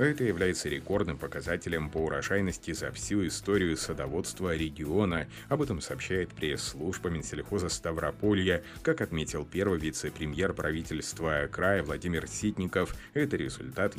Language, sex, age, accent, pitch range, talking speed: Russian, male, 30-49, native, 80-100 Hz, 115 wpm